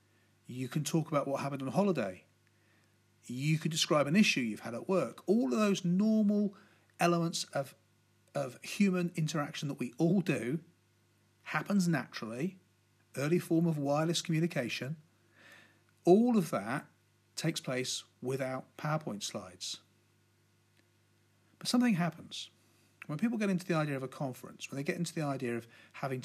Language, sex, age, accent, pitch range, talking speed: English, male, 40-59, British, 110-175 Hz, 150 wpm